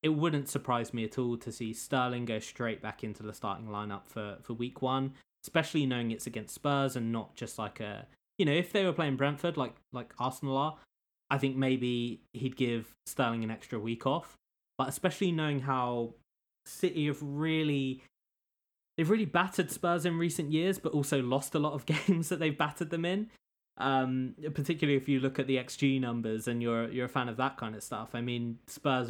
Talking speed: 205 wpm